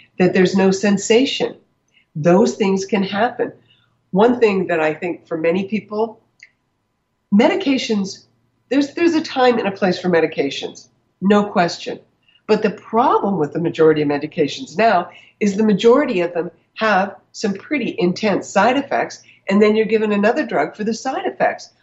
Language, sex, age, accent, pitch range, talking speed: English, female, 60-79, American, 165-215 Hz, 160 wpm